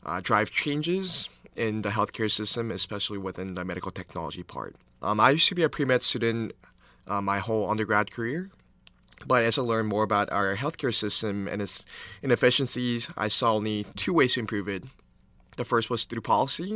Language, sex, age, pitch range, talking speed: English, male, 20-39, 100-125 Hz, 185 wpm